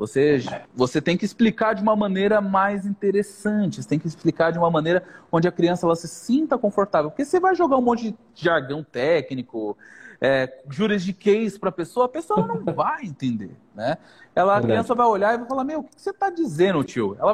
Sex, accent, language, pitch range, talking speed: male, Brazilian, Portuguese, 150-225 Hz, 200 wpm